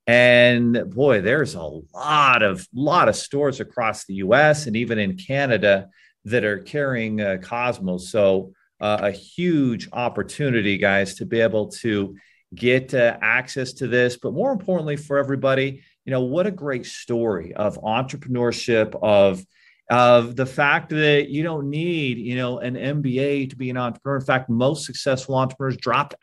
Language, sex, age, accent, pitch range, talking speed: English, male, 40-59, American, 115-145 Hz, 160 wpm